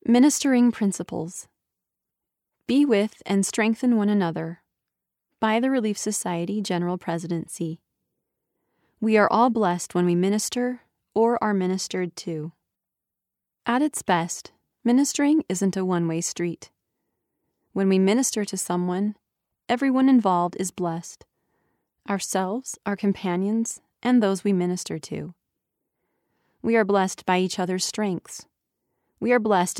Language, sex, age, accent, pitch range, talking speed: English, female, 30-49, American, 175-225 Hz, 120 wpm